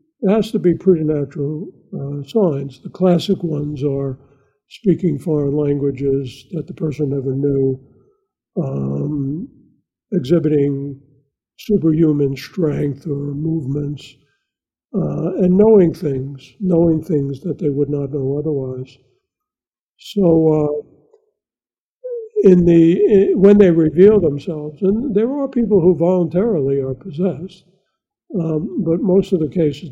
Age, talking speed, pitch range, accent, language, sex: 60-79, 120 wpm, 145-185 Hz, American, English, male